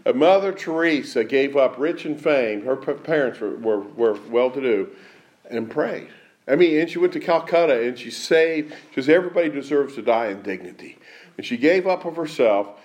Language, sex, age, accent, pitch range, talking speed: English, male, 50-69, American, 150-205 Hz, 175 wpm